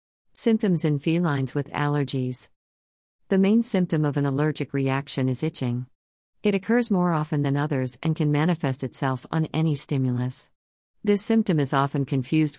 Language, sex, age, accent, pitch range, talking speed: English, female, 50-69, American, 125-165 Hz, 155 wpm